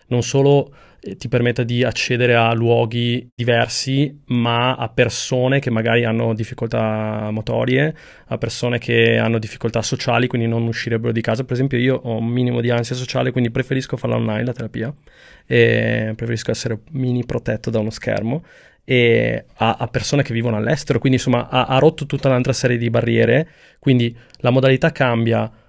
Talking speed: 170 wpm